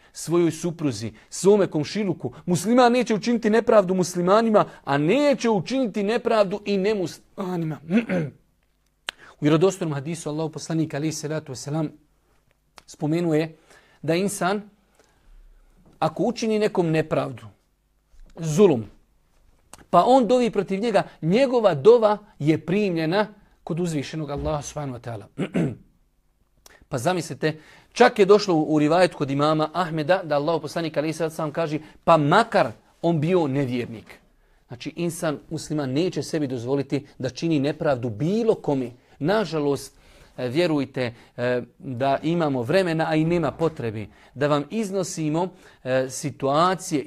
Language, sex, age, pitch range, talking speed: English, male, 40-59, 145-185 Hz, 110 wpm